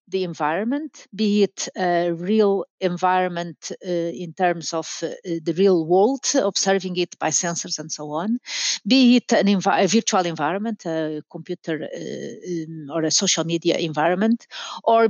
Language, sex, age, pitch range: Swedish, female, 50-69, 175-220 Hz